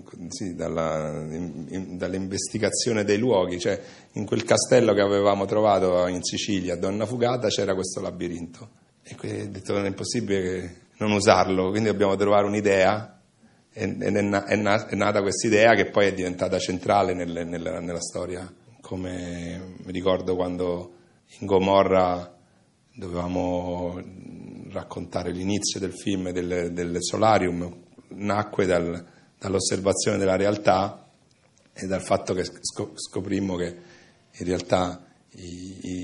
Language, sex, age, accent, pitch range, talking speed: Italian, male, 40-59, native, 90-100 Hz, 130 wpm